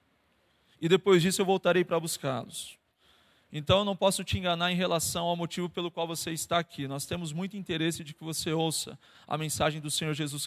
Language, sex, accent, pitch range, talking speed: Portuguese, male, Brazilian, 155-190 Hz, 200 wpm